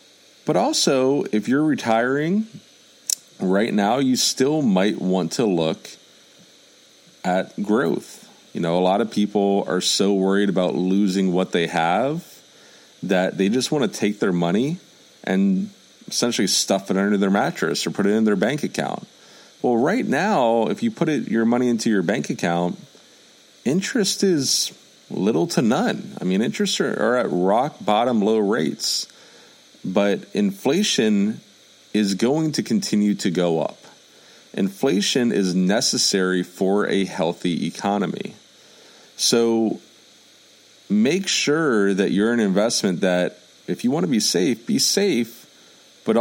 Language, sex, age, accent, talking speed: English, male, 40-59, American, 145 wpm